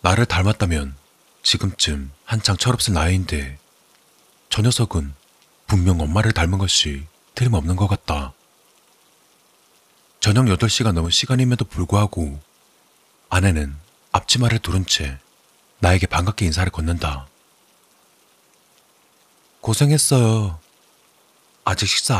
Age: 40-59